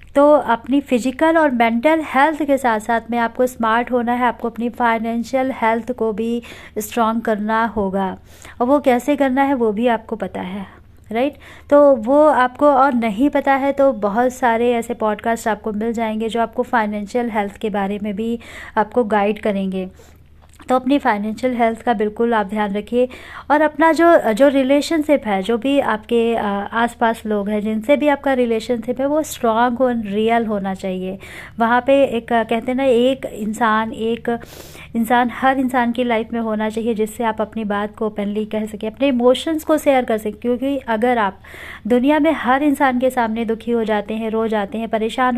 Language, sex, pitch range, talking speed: Hindi, female, 220-260 Hz, 185 wpm